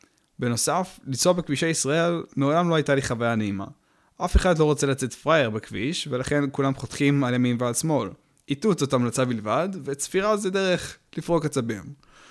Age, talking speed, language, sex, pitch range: 20-39, 160 wpm, Hebrew, male, 120-155 Hz